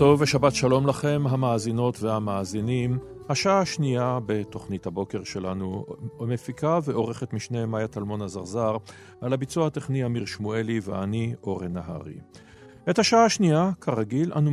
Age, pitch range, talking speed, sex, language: 40-59, 115-150 Hz, 125 wpm, male, Hebrew